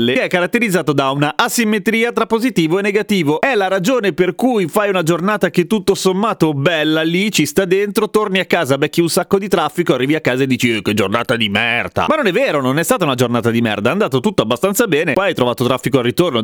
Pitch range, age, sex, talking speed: 135-195 Hz, 30-49, male, 235 wpm